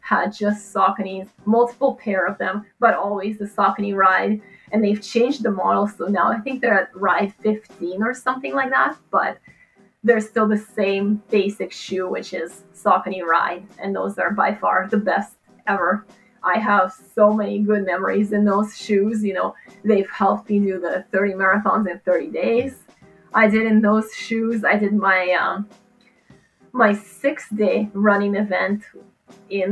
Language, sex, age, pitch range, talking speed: English, female, 20-39, 195-225 Hz, 170 wpm